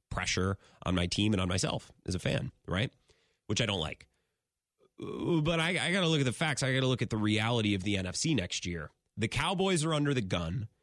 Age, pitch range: 30-49, 105-155 Hz